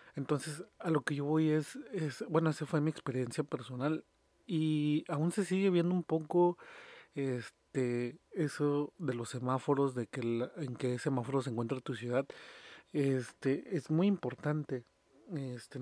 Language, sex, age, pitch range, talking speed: Spanish, male, 40-59, 125-155 Hz, 155 wpm